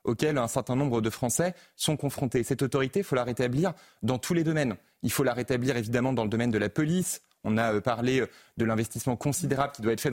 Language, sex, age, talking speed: French, male, 30-49, 230 wpm